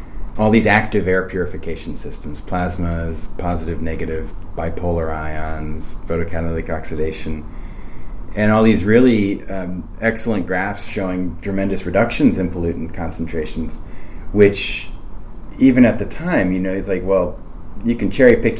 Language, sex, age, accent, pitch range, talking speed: English, male, 30-49, American, 85-105 Hz, 130 wpm